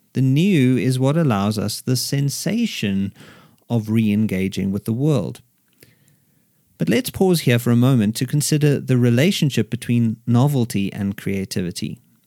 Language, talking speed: English, 135 wpm